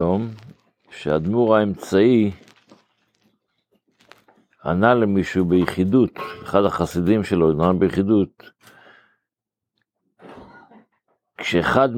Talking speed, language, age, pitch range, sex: 55 wpm, Hebrew, 60-79, 90-110 Hz, male